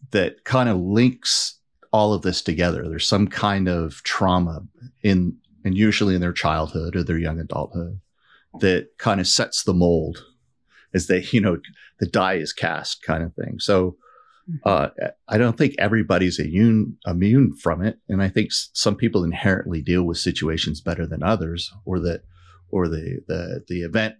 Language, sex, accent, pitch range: English, male, American, 85-105 Hz